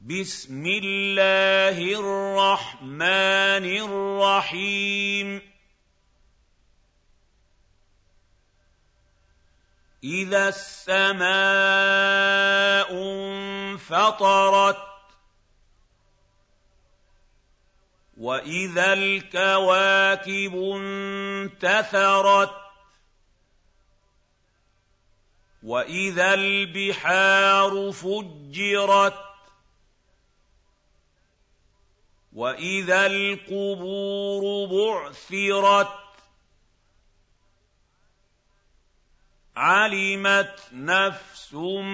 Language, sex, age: Arabic, male, 50-69